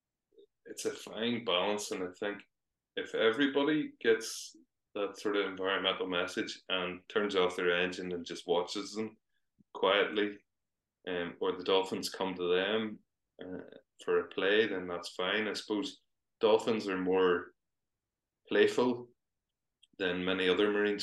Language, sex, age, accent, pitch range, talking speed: English, male, 20-39, Irish, 90-150 Hz, 140 wpm